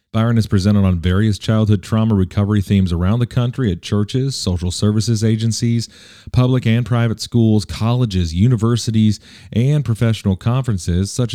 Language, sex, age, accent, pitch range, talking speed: English, male, 40-59, American, 95-115 Hz, 145 wpm